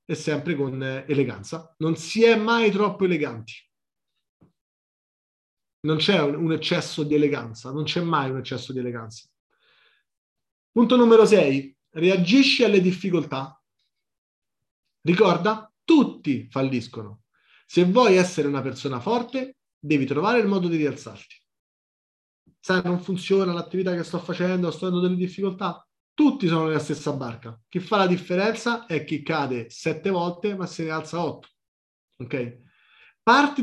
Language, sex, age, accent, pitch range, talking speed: Italian, male, 30-49, native, 140-190 Hz, 130 wpm